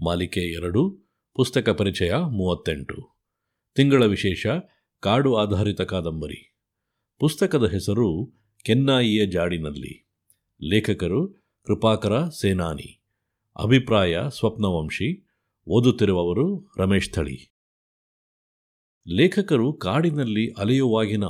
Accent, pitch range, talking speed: native, 90-115 Hz, 70 wpm